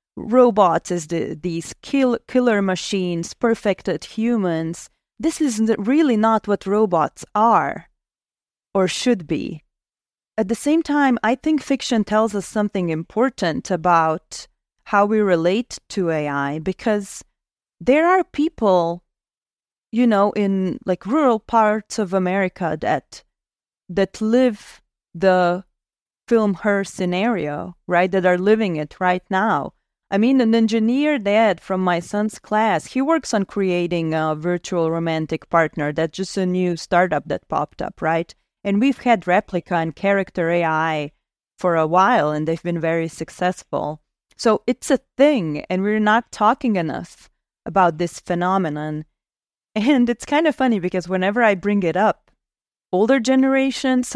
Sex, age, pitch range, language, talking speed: female, 30-49, 175-230 Hz, English, 140 wpm